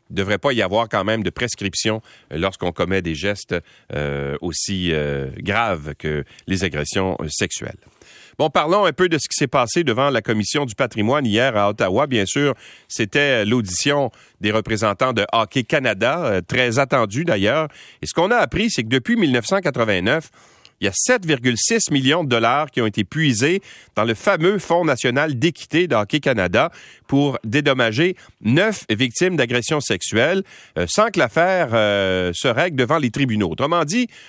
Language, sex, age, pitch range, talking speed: French, male, 40-59, 110-160 Hz, 165 wpm